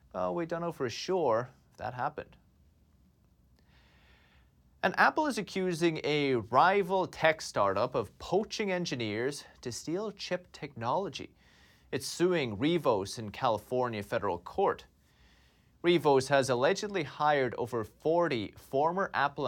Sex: male